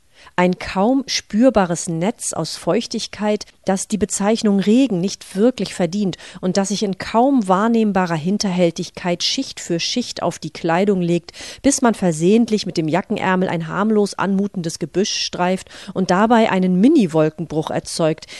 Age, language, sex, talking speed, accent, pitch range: 40-59, German, female, 140 wpm, German, 170-210 Hz